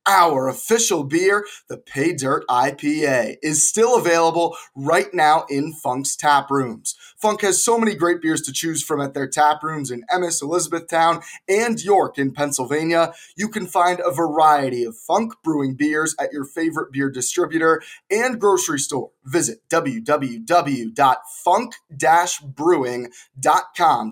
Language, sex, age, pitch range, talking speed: English, male, 20-39, 140-175 Hz, 135 wpm